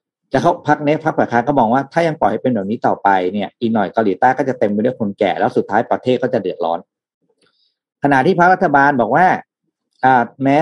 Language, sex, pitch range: Thai, male, 110-150 Hz